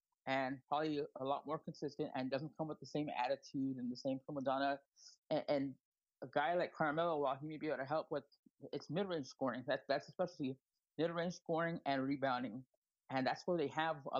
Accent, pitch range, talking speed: American, 135-155 Hz, 200 wpm